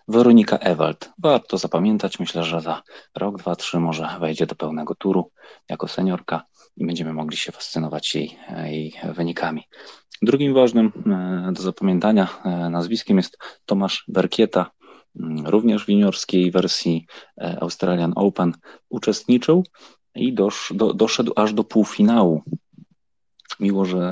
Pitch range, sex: 80-100 Hz, male